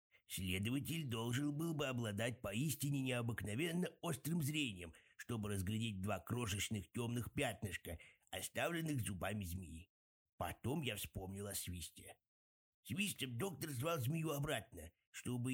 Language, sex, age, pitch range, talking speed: Russian, male, 50-69, 95-130 Hz, 110 wpm